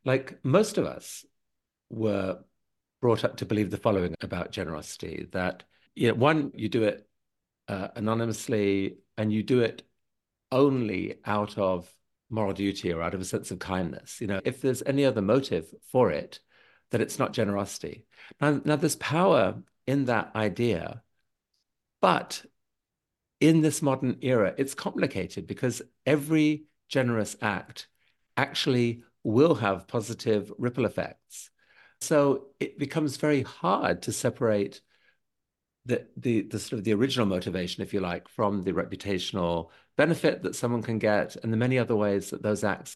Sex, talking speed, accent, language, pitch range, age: male, 150 wpm, British, English, 100-130 Hz, 50-69